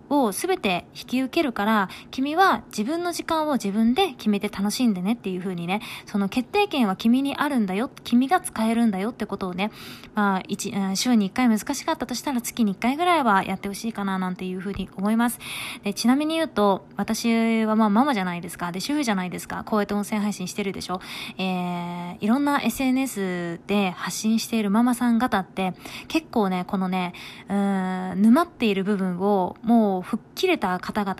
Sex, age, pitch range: female, 20-39, 195-265 Hz